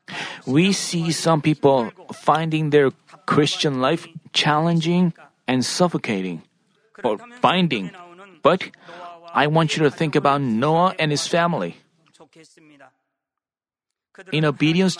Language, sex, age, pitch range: Korean, male, 40-59, 145-180 Hz